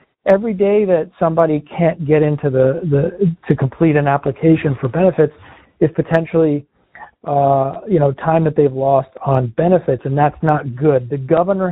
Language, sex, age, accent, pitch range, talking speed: English, male, 50-69, American, 140-165 Hz, 165 wpm